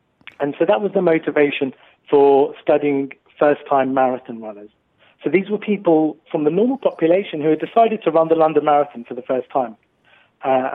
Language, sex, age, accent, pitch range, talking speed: English, male, 40-59, British, 140-180 Hz, 180 wpm